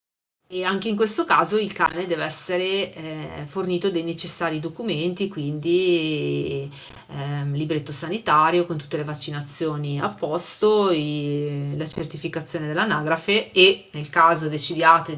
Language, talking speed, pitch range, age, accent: Italian, 120 wpm, 150-180 Hz, 40-59, native